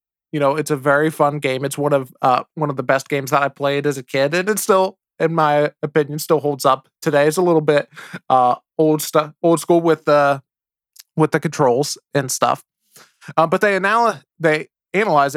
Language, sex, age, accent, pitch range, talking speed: English, male, 20-39, American, 140-160 Hz, 210 wpm